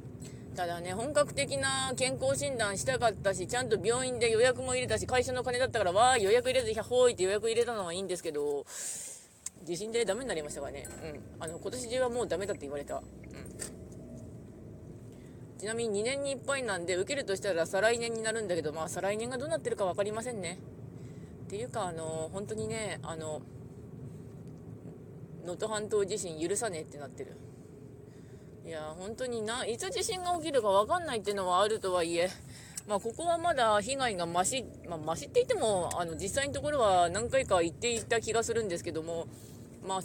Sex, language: female, Japanese